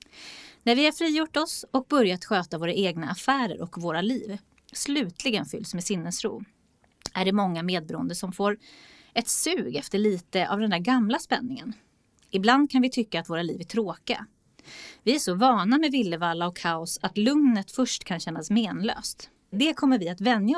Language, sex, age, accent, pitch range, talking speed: Swedish, female, 20-39, native, 180-255 Hz, 180 wpm